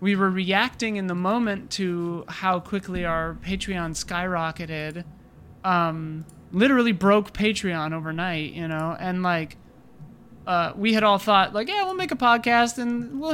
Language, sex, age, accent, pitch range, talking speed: English, male, 30-49, American, 165-200 Hz, 155 wpm